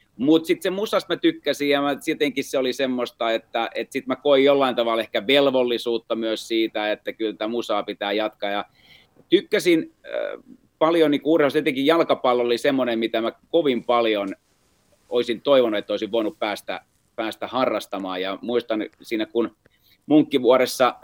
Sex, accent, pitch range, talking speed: male, native, 110-140 Hz, 160 wpm